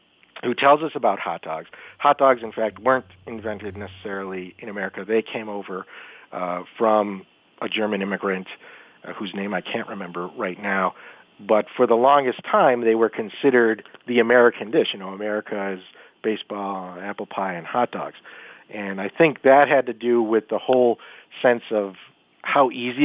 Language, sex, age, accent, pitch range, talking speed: English, male, 40-59, American, 105-140 Hz, 170 wpm